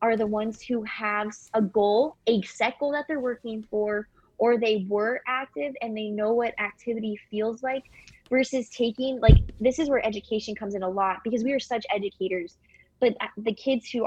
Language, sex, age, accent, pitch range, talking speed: English, female, 20-39, American, 210-255 Hz, 190 wpm